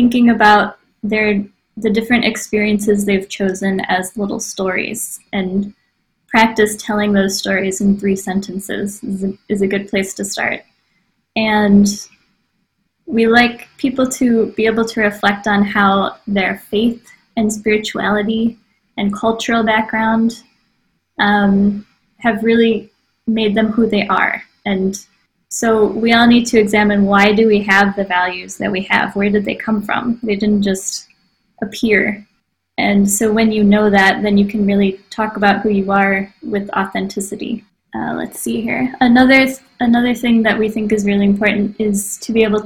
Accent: American